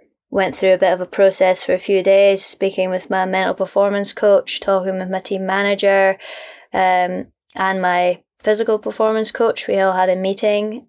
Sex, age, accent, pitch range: female, 20-39, British, 185-215 Hz